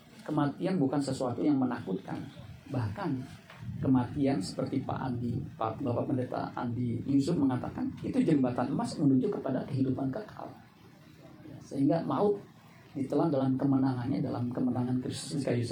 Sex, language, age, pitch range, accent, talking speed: male, Indonesian, 40-59, 125-145 Hz, native, 115 wpm